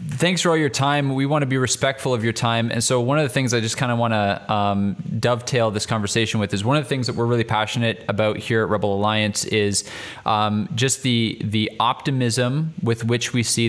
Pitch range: 105-125 Hz